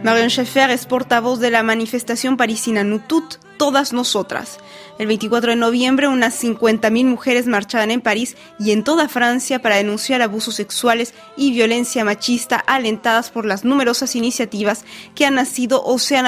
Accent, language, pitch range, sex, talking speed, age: Mexican, Spanish, 210-255 Hz, female, 160 wpm, 20-39